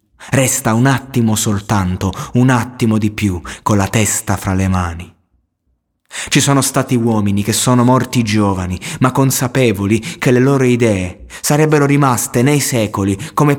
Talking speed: 145 wpm